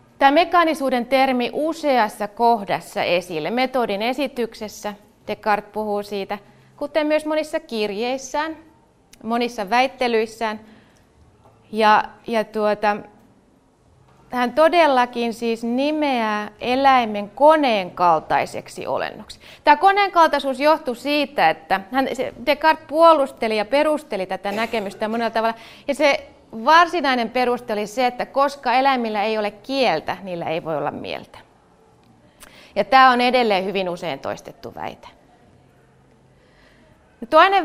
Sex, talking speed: female, 105 wpm